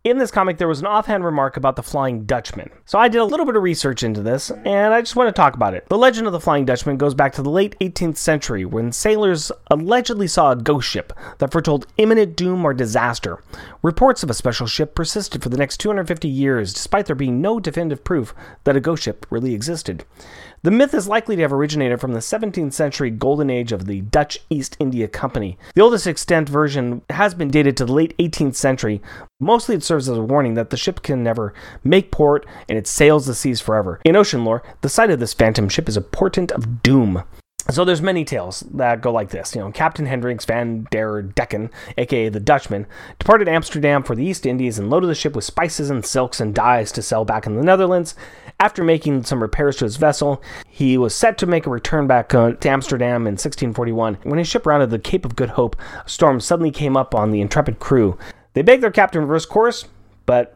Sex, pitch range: male, 120-170 Hz